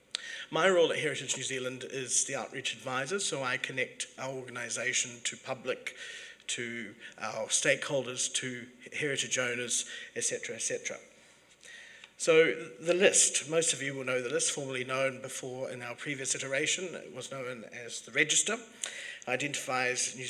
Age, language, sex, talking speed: 50-69, English, male, 150 wpm